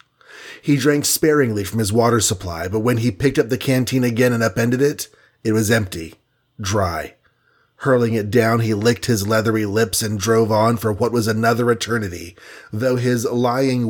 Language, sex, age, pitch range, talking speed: English, male, 30-49, 110-135 Hz, 175 wpm